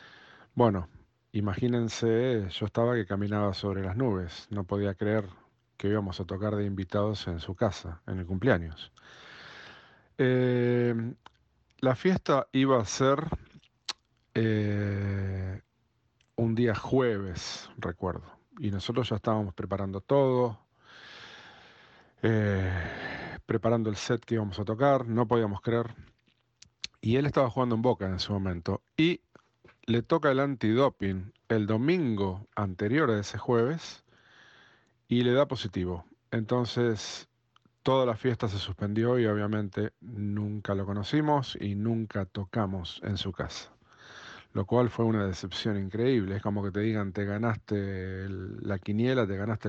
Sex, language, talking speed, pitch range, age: male, Spanish, 135 wpm, 100-120 Hz, 40-59